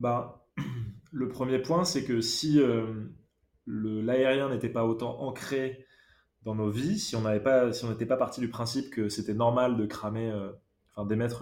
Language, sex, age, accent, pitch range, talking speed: French, male, 20-39, French, 110-125 Hz, 170 wpm